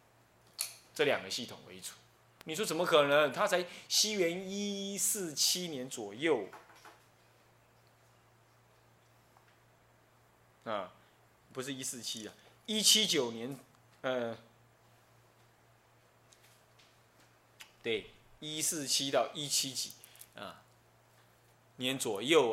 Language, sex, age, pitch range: Chinese, male, 20-39, 120-185 Hz